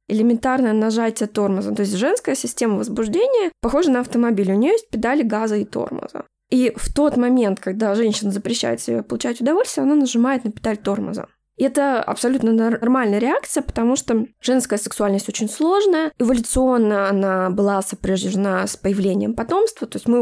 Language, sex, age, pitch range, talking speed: Russian, female, 20-39, 210-255 Hz, 160 wpm